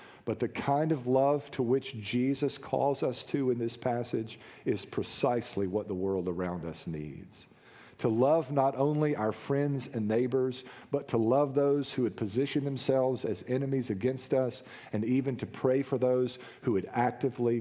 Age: 50-69